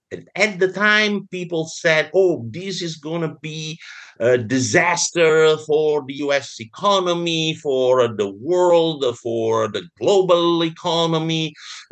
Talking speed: 120 wpm